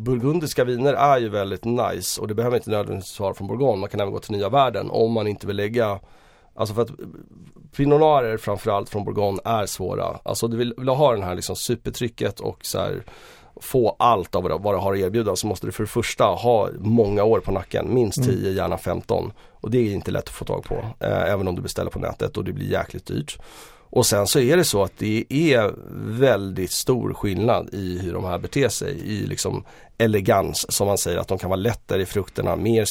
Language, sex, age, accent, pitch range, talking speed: Swedish, male, 30-49, native, 95-120 Hz, 220 wpm